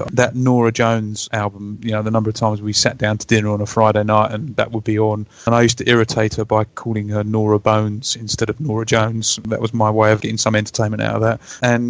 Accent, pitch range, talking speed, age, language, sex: British, 105-120 Hz, 255 wpm, 30-49, English, male